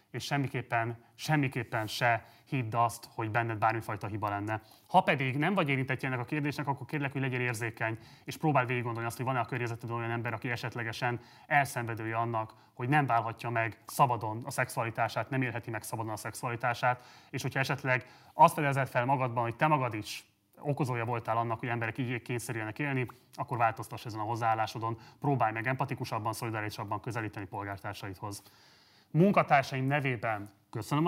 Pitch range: 115-140 Hz